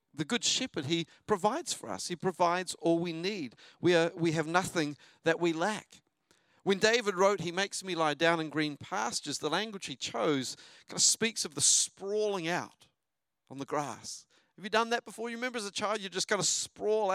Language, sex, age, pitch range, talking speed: English, male, 50-69, 175-235 Hz, 205 wpm